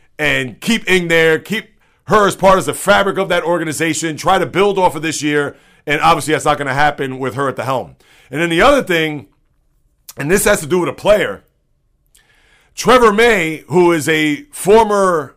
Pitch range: 155-200 Hz